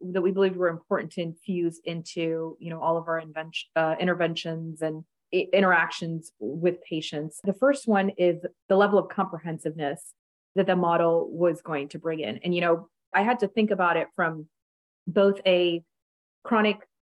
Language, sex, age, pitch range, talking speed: English, female, 30-49, 165-195 Hz, 170 wpm